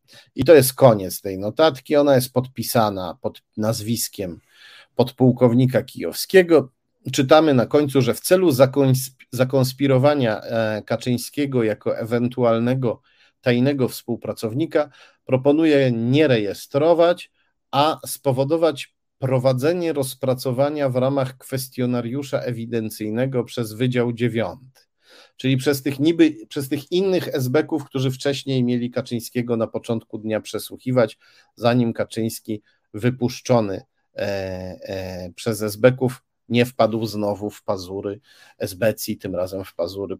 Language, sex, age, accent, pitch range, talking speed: Polish, male, 40-59, native, 115-140 Hz, 105 wpm